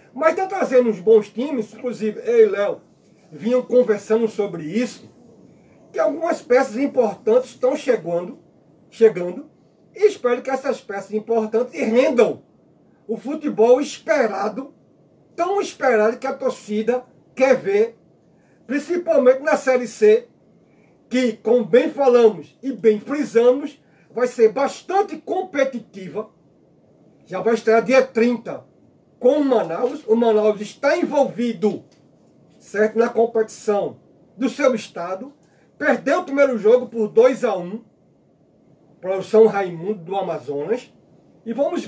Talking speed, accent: 125 wpm, Brazilian